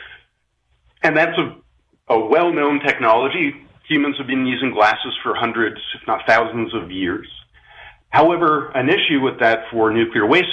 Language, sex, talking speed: English, male, 150 wpm